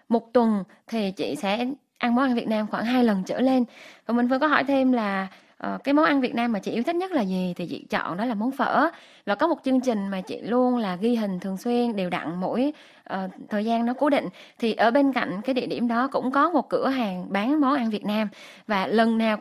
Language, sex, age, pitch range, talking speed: Vietnamese, female, 20-39, 215-270 Hz, 265 wpm